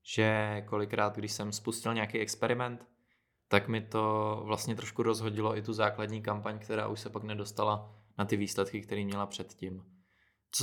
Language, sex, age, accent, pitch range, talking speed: Czech, male, 20-39, Slovak, 105-120 Hz, 165 wpm